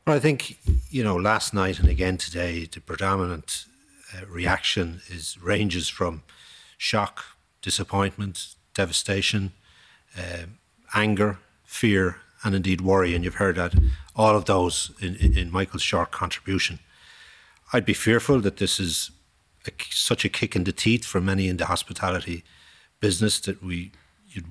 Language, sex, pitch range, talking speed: English, male, 90-105 Hz, 150 wpm